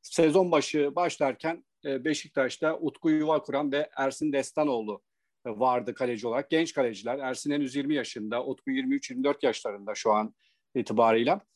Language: Turkish